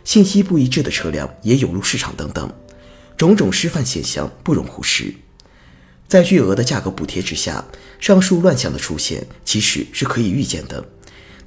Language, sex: Chinese, male